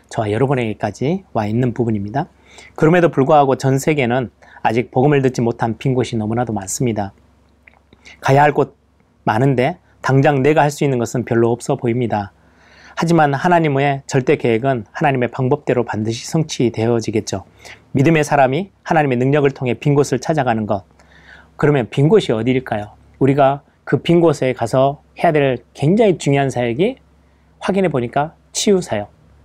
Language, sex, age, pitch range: Korean, male, 30-49, 115-150 Hz